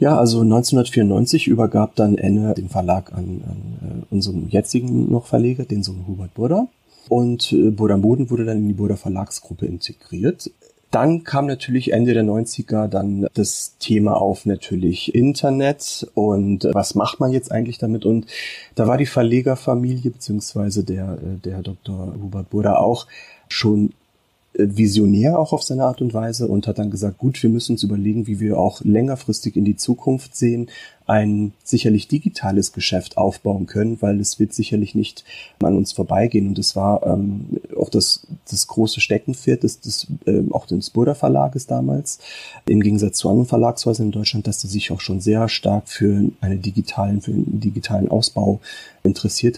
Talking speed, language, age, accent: 165 wpm, German, 30-49, German